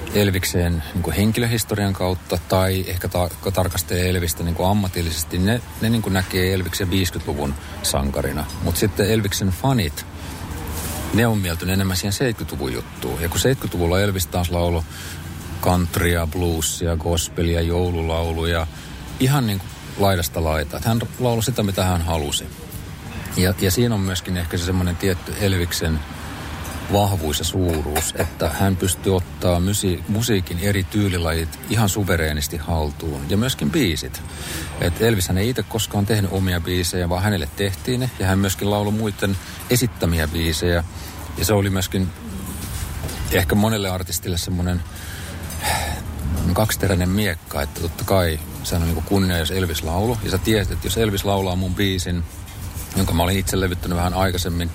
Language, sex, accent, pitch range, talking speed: Finnish, male, native, 85-100 Hz, 145 wpm